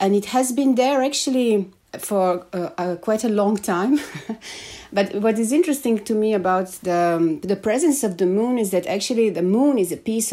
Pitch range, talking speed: 175-215 Hz, 205 wpm